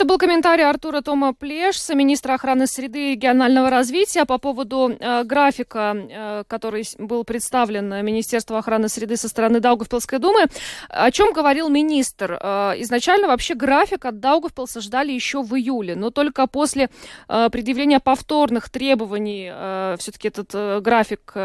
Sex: female